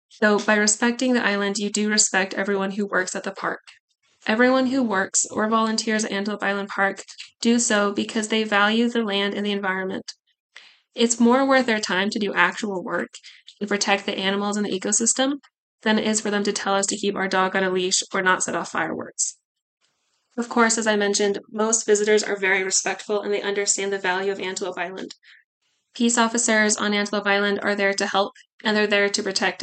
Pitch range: 200-235 Hz